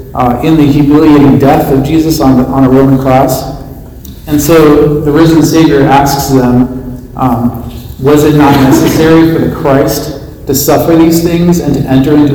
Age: 40-59